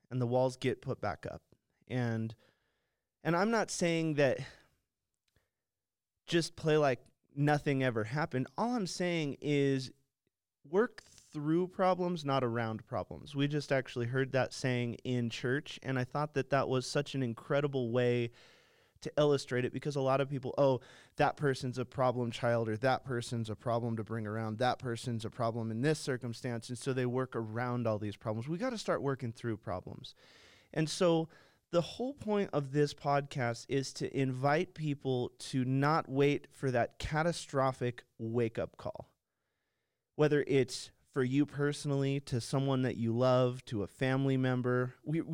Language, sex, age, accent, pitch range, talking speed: English, male, 30-49, American, 120-145 Hz, 170 wpm